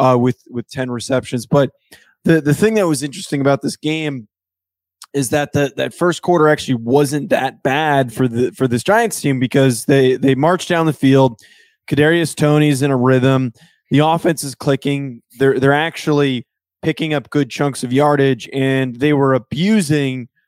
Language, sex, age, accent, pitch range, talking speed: English, male, 20-39, American, 135-165 Hz, 175 wpm